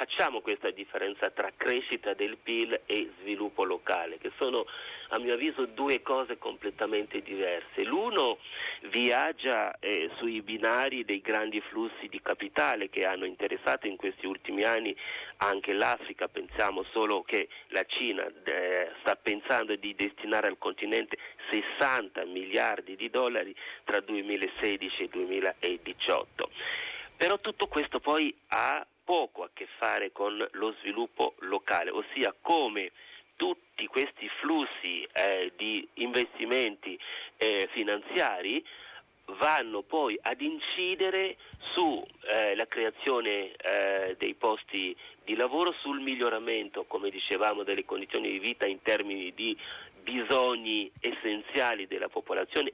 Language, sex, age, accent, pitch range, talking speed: Italian, male, 40-59, native, 315-445 Hz, 125 wpm